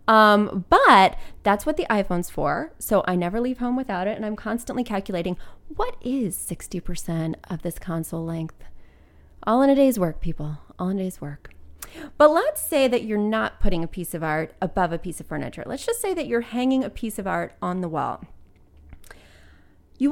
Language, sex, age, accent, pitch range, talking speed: English, female, 30-49, American, 175-240 Hz, 200 wpm